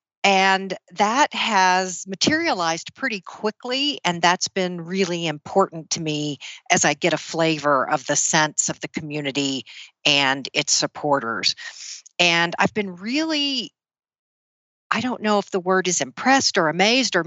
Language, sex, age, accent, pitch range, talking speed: English, female, 50-69, American, 160-195 Hz, 145 wpm